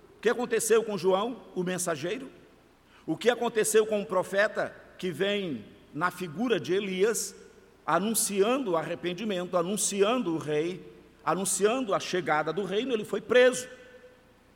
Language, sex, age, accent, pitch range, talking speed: Portuguese, male, 50-69, Brazilian, 160-215 Hz, 135 wpm